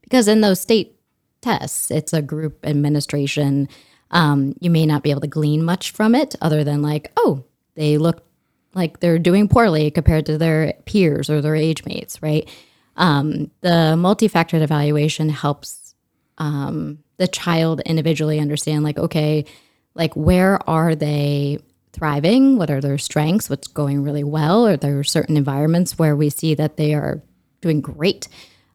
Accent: American